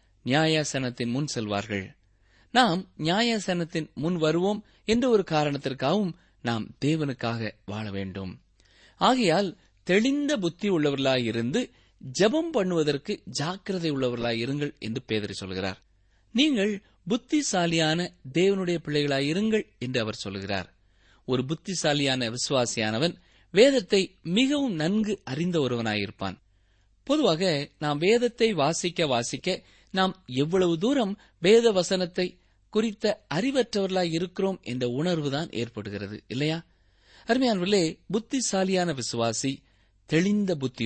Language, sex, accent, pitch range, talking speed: Tamil, male, native, 115-190 Hz, 90 wpm